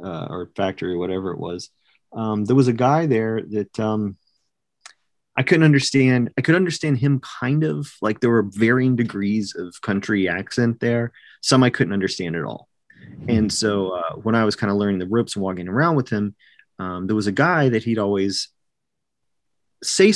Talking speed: 190 wpm